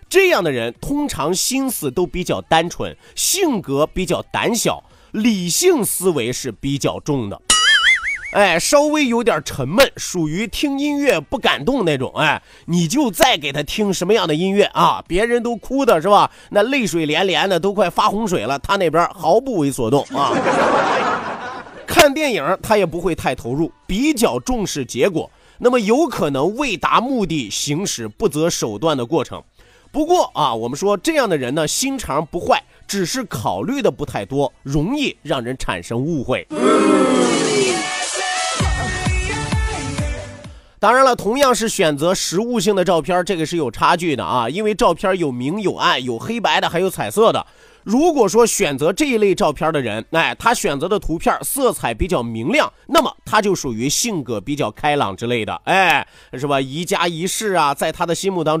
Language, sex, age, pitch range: Chinese, male, 30-49, 150-235 Hz